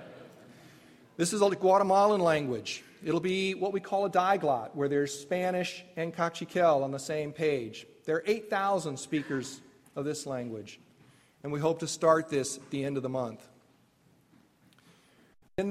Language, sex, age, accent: English, male, 40-59, American